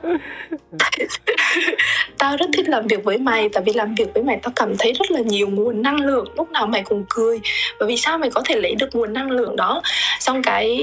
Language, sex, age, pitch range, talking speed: Vietnamese, female, 20-39, 220-295 Hz, 225 wpm